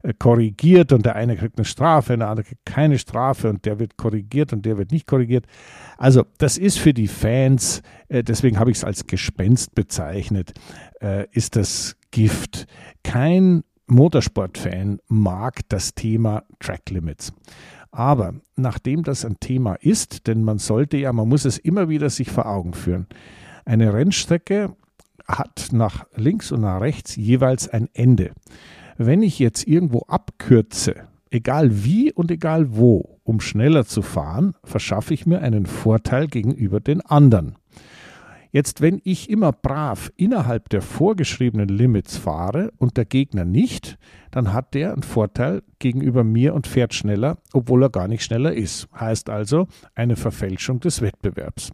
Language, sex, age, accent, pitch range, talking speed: German, male, 50-69, German, 110-145 Hz, 155 wpm